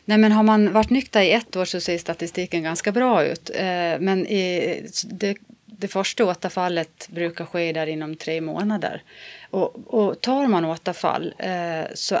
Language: Swedish